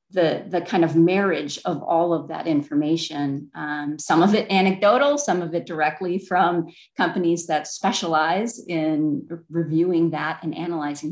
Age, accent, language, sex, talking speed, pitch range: 40-59, American, English, female, 150 wpm, 155-180 Hz